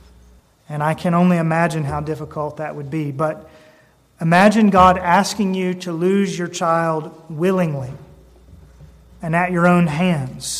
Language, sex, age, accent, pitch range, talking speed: English, male, 30-49, American, 155-210 Hz, 140 wpm